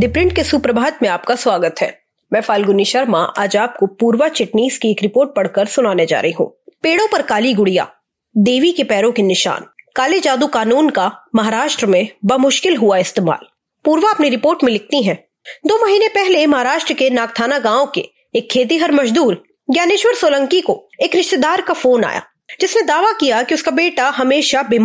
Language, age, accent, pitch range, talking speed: English, 20-39, Indian, 235-345 Hz, 120 wpm